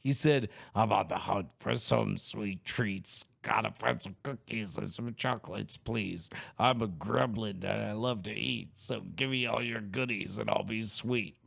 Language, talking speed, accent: English, 190 wpm, American